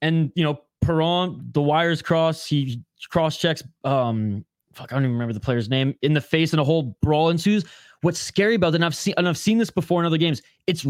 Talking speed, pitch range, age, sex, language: 215 wpm, 140-180 Hz, 20-39, male, English